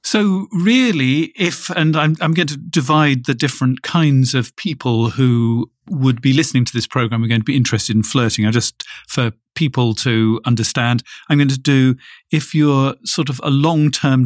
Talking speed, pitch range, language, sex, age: 185 wpm, 115-150 Hz, English, male, 40-59